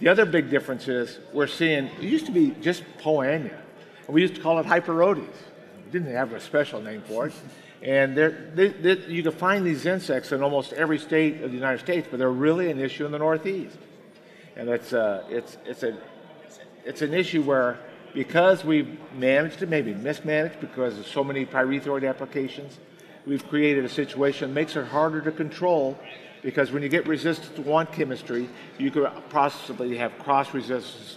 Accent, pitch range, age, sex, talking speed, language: American, 130-160 Hz, 50-69, male, 175 wpm, English